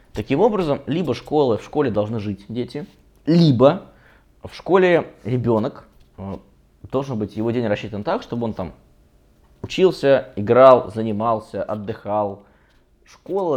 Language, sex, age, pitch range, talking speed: Russian, male, 20-39, 100-120 Hz, 120 wpm